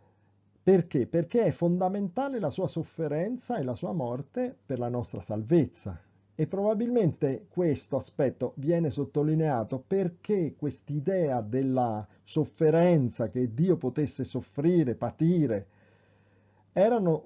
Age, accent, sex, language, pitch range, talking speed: 40-59, native, male, Italian, 115-175 Hz, 110 wpm